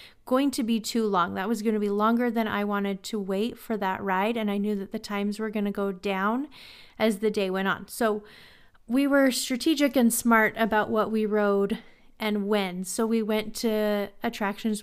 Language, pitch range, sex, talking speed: English, 200-235 Hz, female, 210 wpm